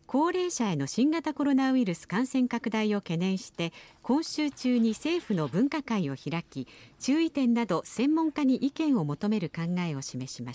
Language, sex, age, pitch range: Japanese, female, 50-69, 170-265 Hz